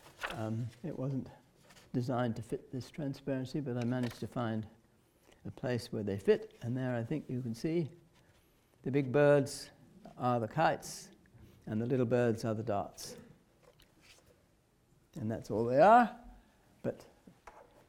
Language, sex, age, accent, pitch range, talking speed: English, male, 60-79, British, 115-145 Hz, 150 wpm